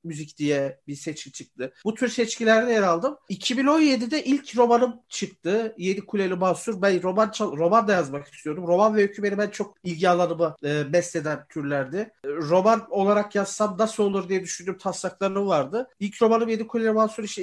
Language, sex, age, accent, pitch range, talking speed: Turkish, male, 50-69, native, 175-230 Hz, 170 wpm